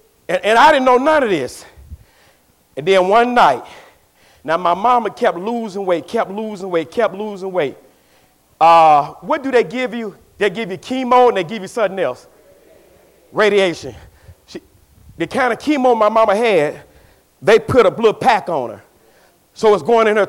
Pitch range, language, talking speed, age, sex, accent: 175-240 Hz, English, 175 wpm, 40-59, male, American